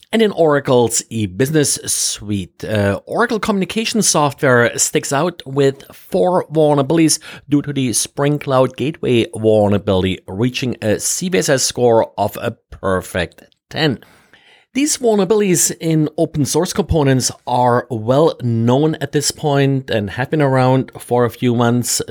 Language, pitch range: English, 110-150 Hz